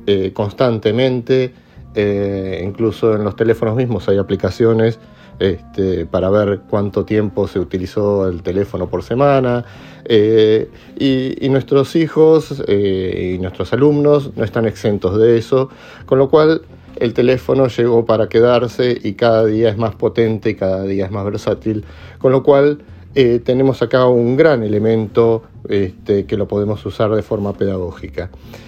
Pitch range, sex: 100-125 Hz, male